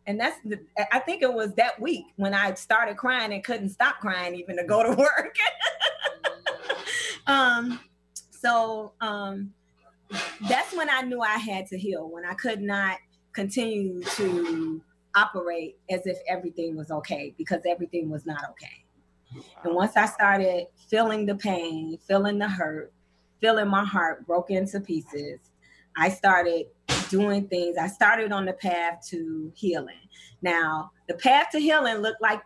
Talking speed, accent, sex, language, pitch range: 155 wpm, American, female, English, 175-230 Hz